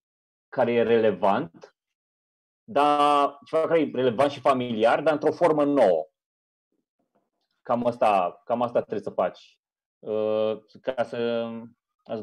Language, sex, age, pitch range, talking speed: Romanian, male, 30-49, 130-205 Hz, 125 wpm